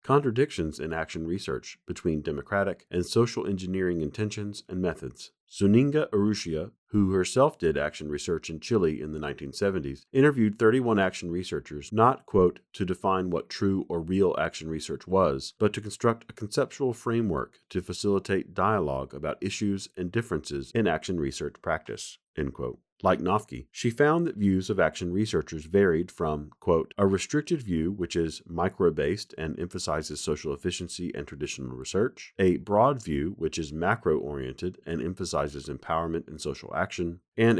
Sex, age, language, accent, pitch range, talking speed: male, 40-59, English, American, 75-105 Hz, 155 wpm